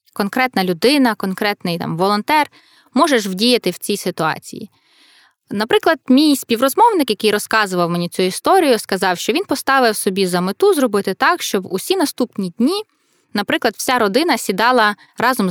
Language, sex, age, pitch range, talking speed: Ukrainian, female, 20-39, 185-255 Hz, 140 wpm